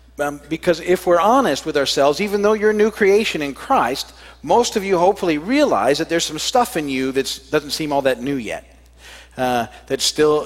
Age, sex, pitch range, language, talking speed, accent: 50-69, male, 130-165 Hz, English, 205 wpm, American